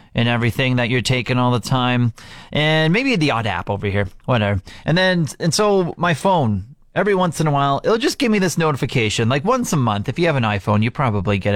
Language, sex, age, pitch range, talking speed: English, male, 30-49, 120-180 Hz, 235 wpm